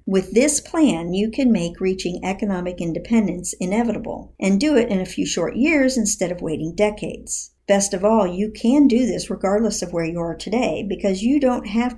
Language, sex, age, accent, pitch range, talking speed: English, male, 50-69, American, 185-235 Hz, 195 wpm